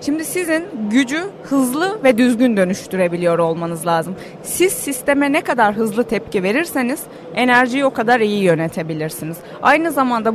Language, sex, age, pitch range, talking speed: Turkish, female, 30-49, 190-275 Hz, 135 wpm